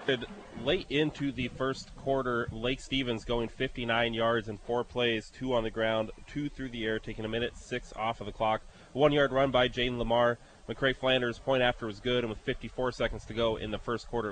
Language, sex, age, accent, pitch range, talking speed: English, male, 20-39, American, 110-130 Hz, 215 wpm